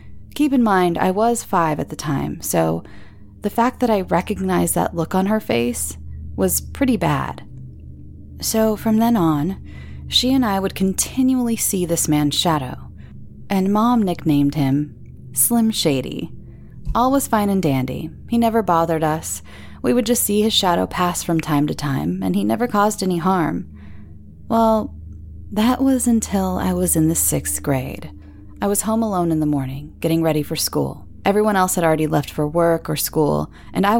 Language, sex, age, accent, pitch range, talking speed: English, female, 20-39, American, 135-210 Hz, 175 wpm